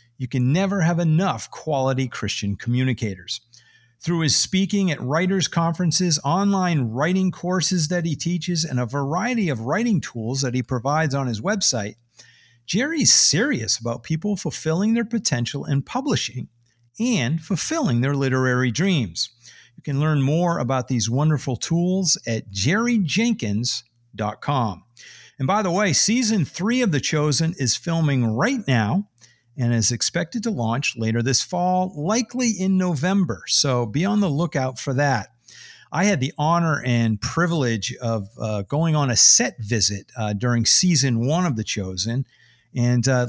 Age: 50-69